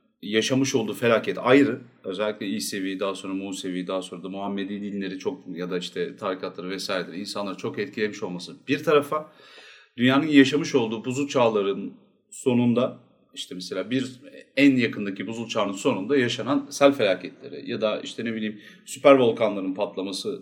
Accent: native